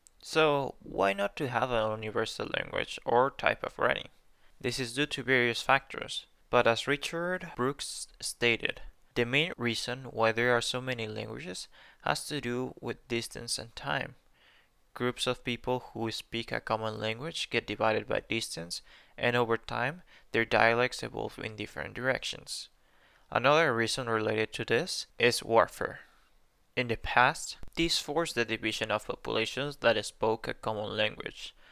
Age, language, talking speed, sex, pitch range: 20-39, English, 155 wpm, male, 110-130 Hz